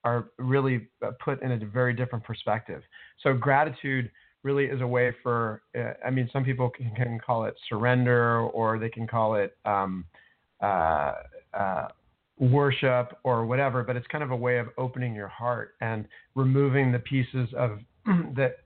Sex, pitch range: male, 115-130 Hz